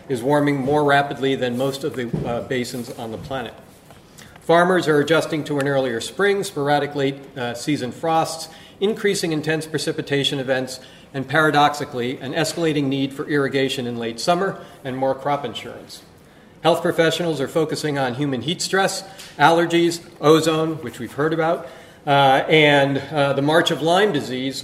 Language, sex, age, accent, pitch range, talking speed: English, male, 40-59, American, 135-165 Hz, 160 wpm